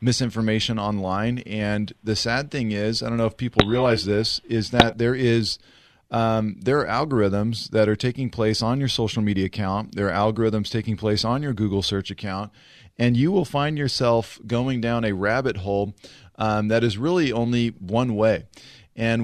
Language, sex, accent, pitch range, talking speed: English, male, American, 105-130 Hz, 185 wpm